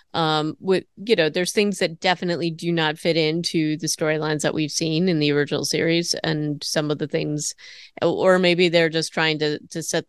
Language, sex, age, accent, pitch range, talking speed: English, female, 30-49, American, 155-175 Hz, 200 wpm